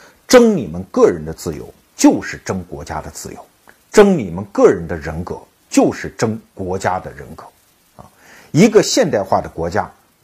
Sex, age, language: male, 50-69, Chinese